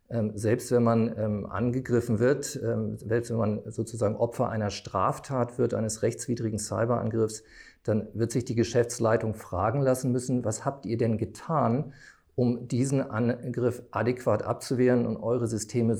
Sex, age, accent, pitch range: male, 40-59, German, 110-125 Hz